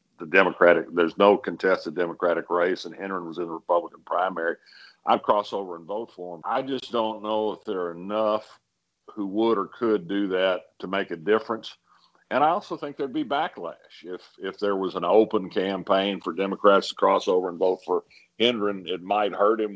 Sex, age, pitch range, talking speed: male, 50-69, 95-115 Hz, 200 wpm